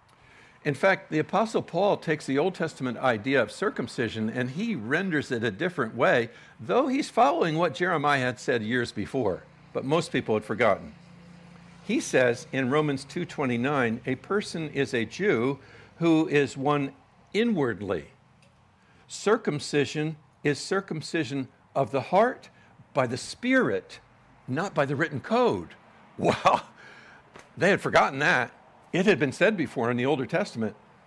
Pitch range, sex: 125-170 Hz, male